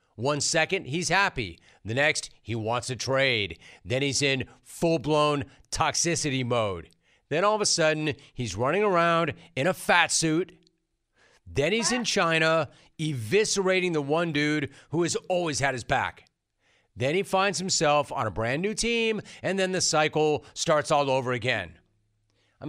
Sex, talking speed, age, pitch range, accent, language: male, 160 wpm, 40-59, 130-170 Hz, American, English